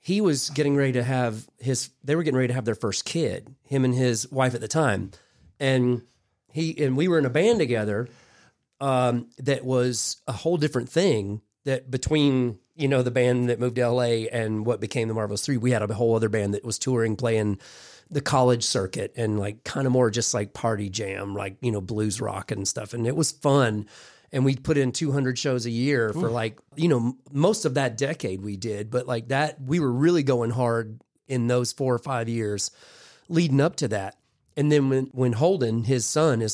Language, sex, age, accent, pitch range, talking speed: English, male, 30-49, American, 115-140 Hz, 215 wpm